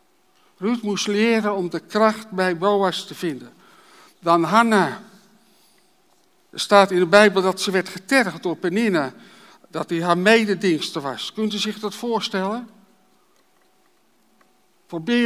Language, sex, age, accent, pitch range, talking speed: Dutch, male, 60-79, Dutch, 180-220 Hz, 135 wpm